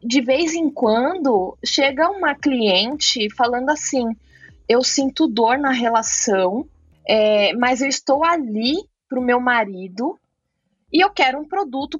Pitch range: 225-300 Hz